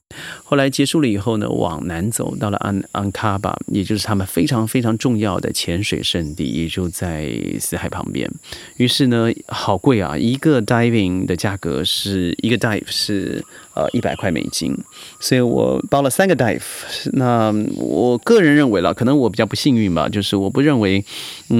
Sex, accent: male, native